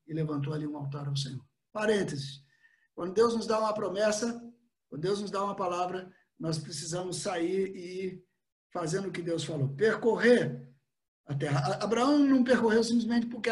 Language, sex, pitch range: Portuguese, male, 165-255 Hz